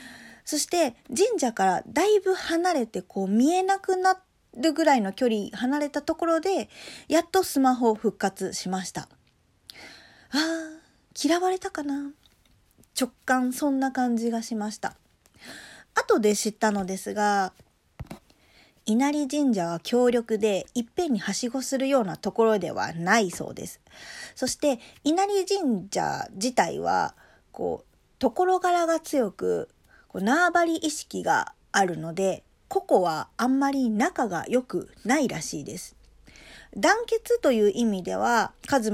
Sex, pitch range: female, 205-310 Hz